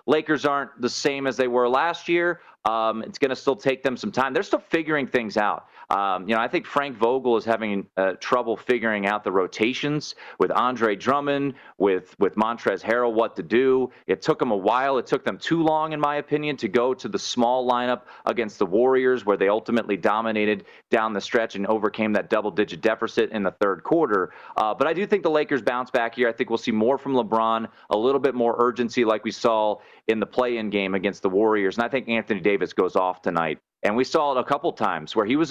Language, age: English, 30-49